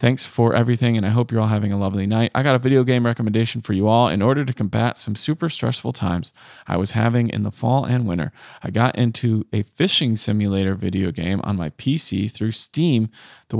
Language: English